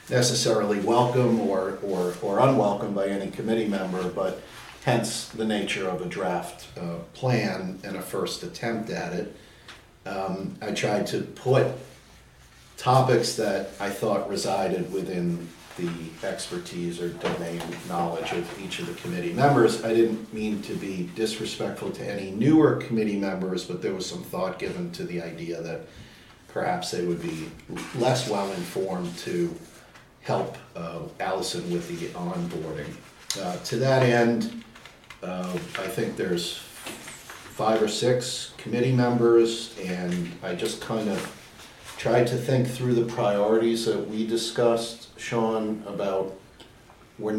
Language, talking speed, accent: English, 140 wpm, American